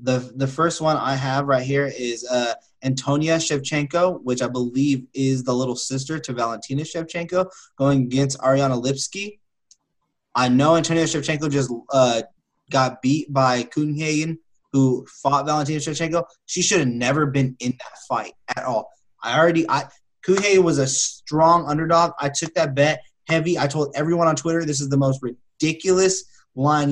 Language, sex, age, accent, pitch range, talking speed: English, male, 20-39, American, 130-155 Hz, 165 wpm